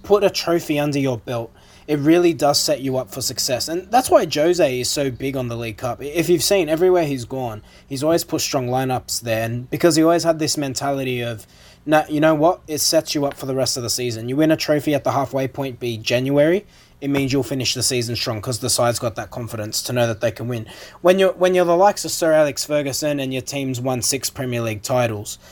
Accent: Australian